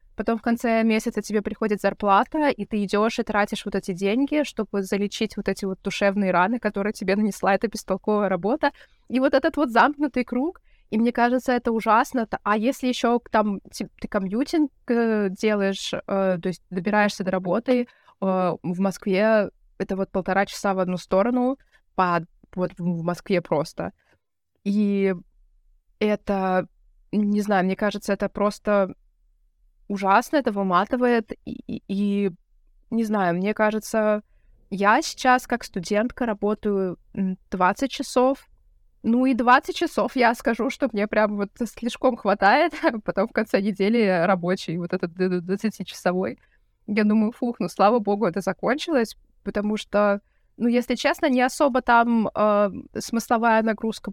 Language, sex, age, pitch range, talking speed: Russian, female, 20-39, 195-240 Hz, 140 wpm